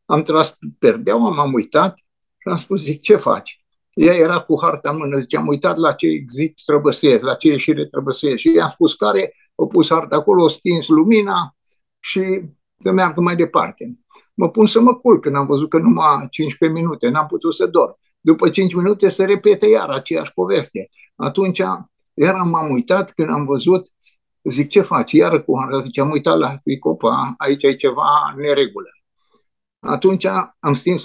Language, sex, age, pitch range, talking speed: Romanian, male, 60-79, 150-190 Hz, 190 wpm